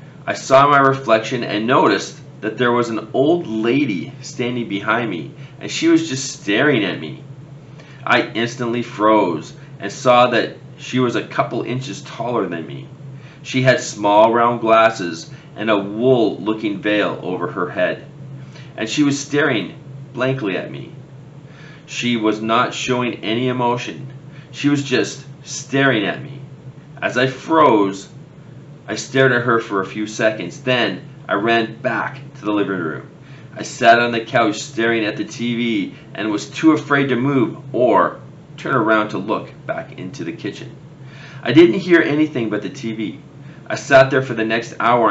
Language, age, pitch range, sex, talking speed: English, 40-59, 115-140 Hz, male, 165 wpm